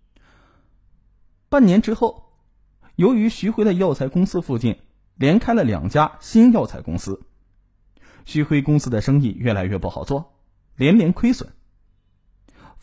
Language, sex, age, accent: Chinese, male, 20-39, native